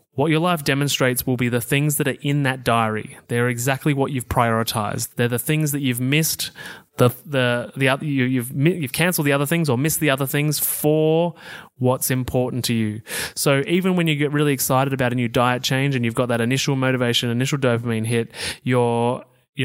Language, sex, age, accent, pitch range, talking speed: English, male, 20-39, Australian, 120-145 Hz, 205 wpm